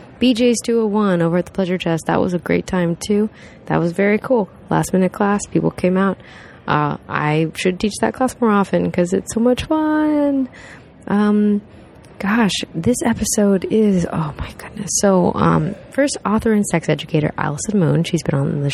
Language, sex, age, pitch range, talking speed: English, female, 20-39, 165-230 Hz, 185 wpm